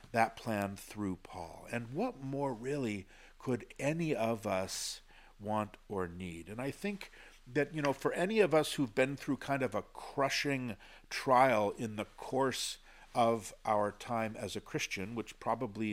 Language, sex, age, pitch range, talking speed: English, male, 50-69, 110-140 Hz, 165 wpm